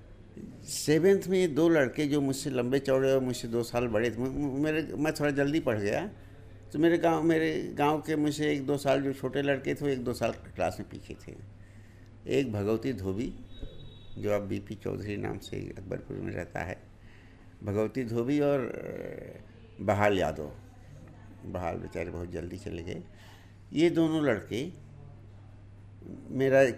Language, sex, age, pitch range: Hindi, male, 60-79, 105-145 Hz